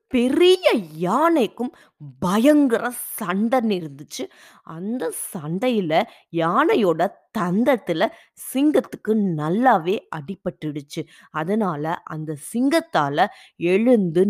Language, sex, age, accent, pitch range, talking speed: Tamil, female, 20-39, native, 170-245 Hz, 45 wpm